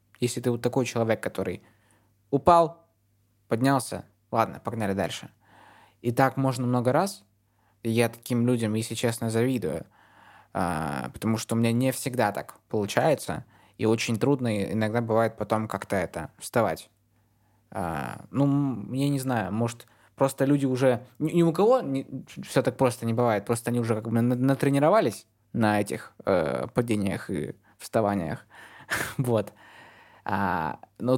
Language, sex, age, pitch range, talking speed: Russian, male, 20-39, 105-130 Hz, 130 wpm